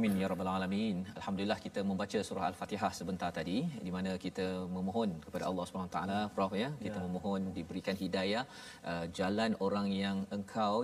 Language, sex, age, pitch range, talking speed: Malayalam, male, 40-59, 95-115 Hz, 155 wpm